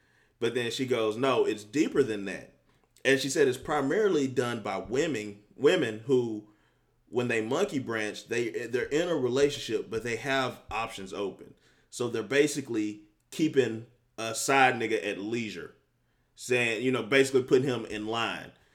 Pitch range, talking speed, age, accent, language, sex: 110-140 Hz, 160 wpm, 30-49, American, English, male